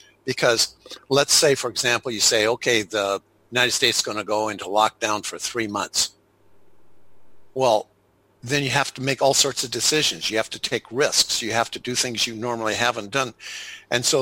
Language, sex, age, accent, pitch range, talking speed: English, male, 60-79, American, 105-125 Hz, 195 wpm